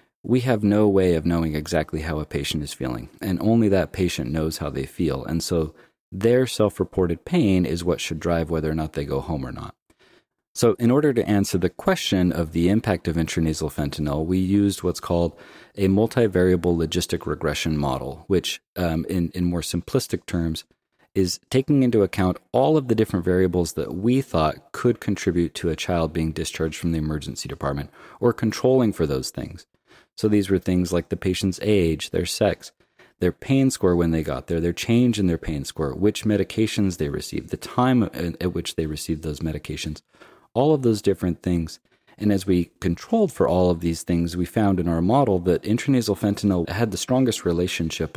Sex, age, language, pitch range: male, 30-49, English, 80-105 Hz